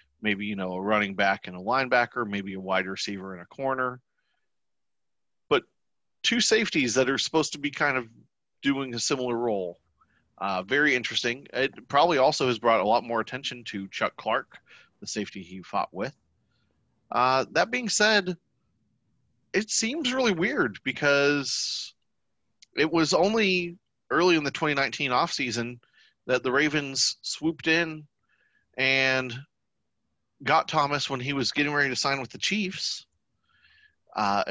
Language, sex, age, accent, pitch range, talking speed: English, male, 30-49, American, 110-150 Hz, 150 wpm